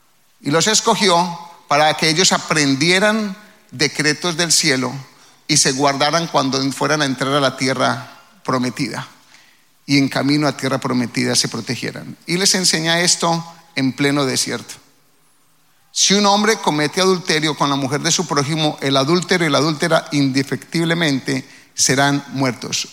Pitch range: 135-170 Hz